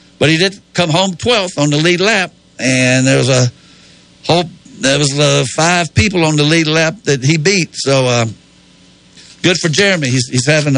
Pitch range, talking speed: 130-175 Hz, 195 wpm